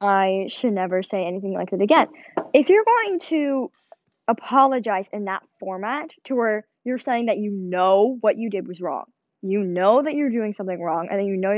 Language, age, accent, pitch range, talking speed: English, 10-29, American, 195-290 Hz, 200 wpm